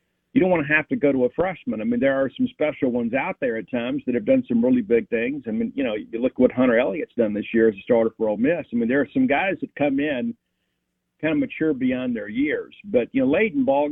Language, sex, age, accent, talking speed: English, male, 50-69, American, 295 wpm